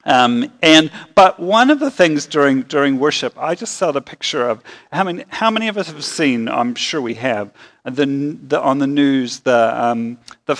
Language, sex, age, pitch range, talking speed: English, male, 40-59, 125-155 Hz, 205 wpm